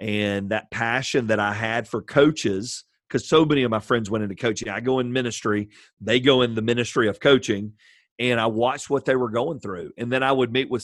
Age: 40-59